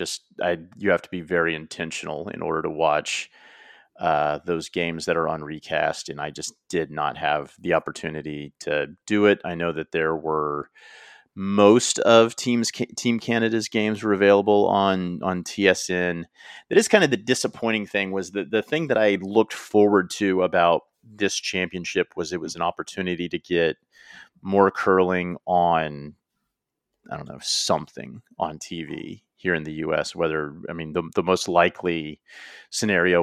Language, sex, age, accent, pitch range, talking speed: English, male, 30-49, American, 85-105 Hz, 170 wpm